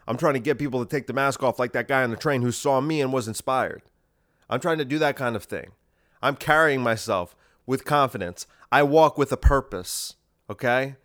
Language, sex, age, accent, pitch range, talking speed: English, male, 30-49, American, 120-155 Hz, 225 wpm